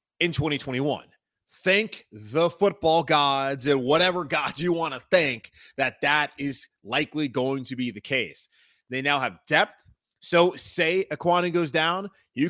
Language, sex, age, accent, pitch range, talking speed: English, male, 30-49, American, 140-185 Hz, 155 wpm